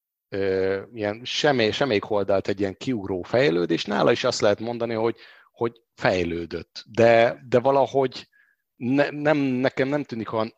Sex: male